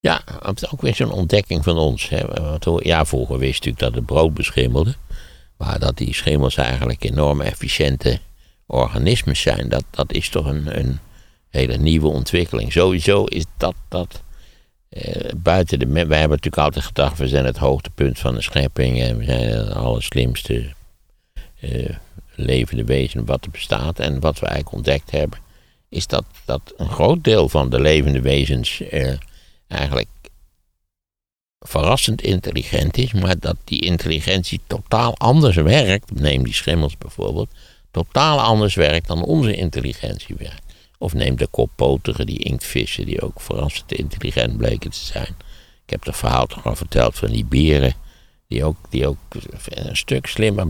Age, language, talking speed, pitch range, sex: 60-79, Dutch, 150 wpm, 65-90 Hz, male